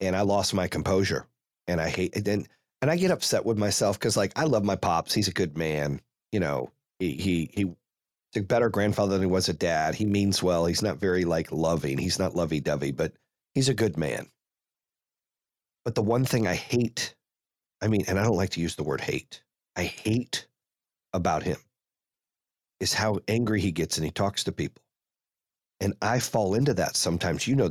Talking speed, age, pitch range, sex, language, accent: 205 wpm, 40-59, 90-110 Hz, male, English, American